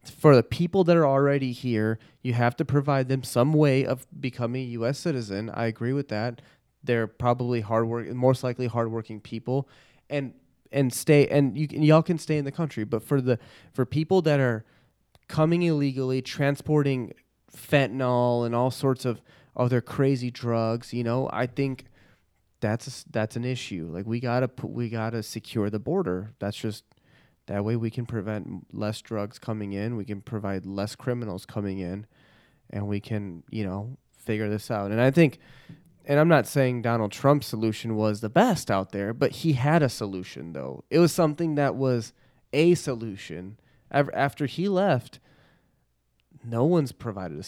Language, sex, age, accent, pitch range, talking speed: English, male, 30-49, American, 110-140 Hz, 175 wpm